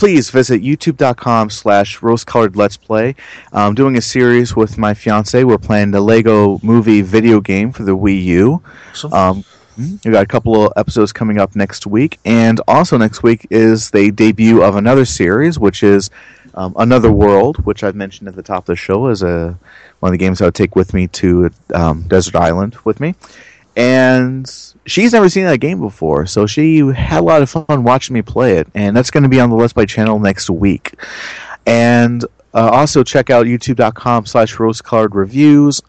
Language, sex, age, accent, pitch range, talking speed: English, male, 30-49, American, 100-125 Hz, 190 wpm